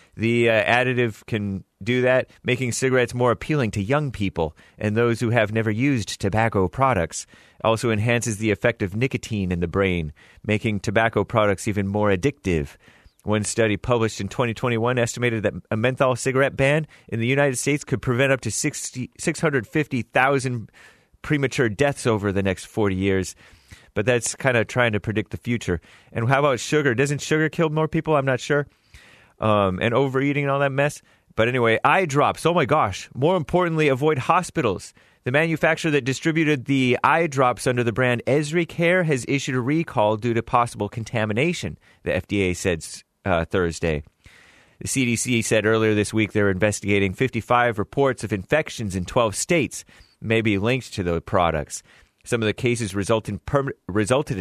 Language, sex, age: English, male, 30-49